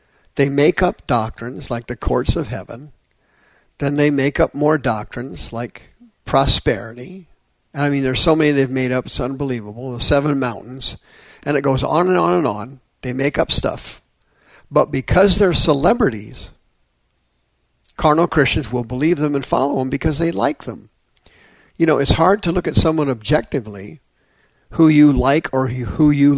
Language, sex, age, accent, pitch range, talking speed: English, male, 50-69, American, 120-145 Hz, 165 wpm